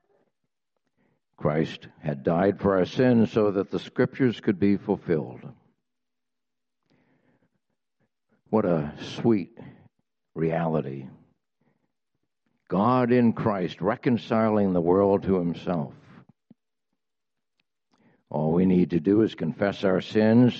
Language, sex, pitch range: English, male, 80-110 Hz